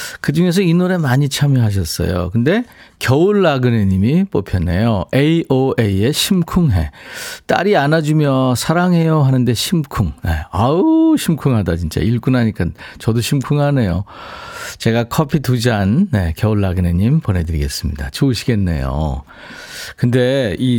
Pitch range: 95-150 Hz